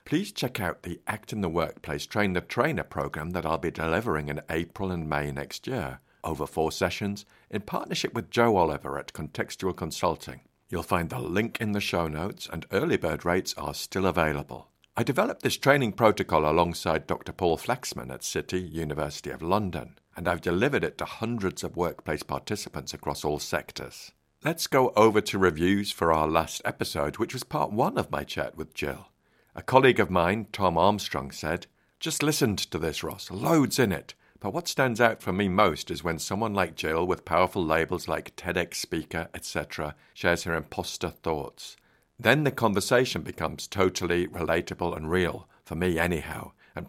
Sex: male